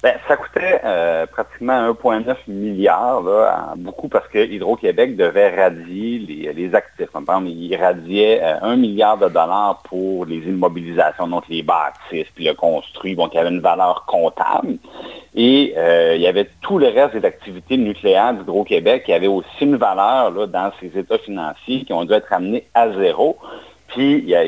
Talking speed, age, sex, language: 185 wpm, 50-69, male, French